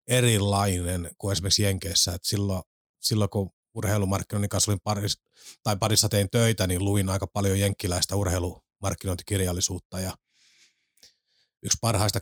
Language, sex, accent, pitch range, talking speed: Finnish, male, native, 95-115 Hz, 120 wpm